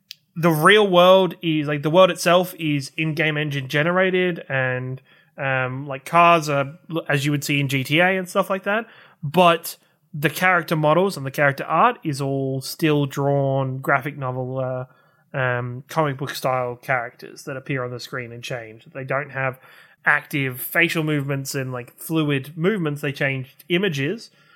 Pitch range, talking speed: 130-165 Hz, 160 wpm